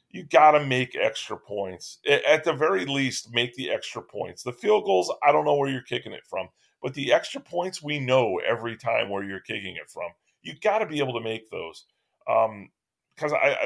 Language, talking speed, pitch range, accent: English, 220 wpm, 120-155 Hz, American